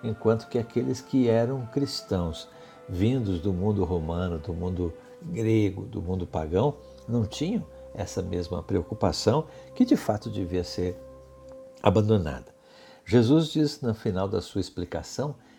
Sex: male